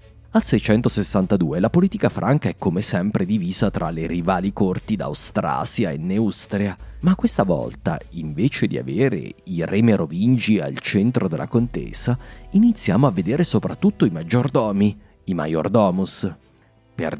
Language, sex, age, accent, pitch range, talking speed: Italian, male, 30-49, native, 90-120 Hz, 135 wpm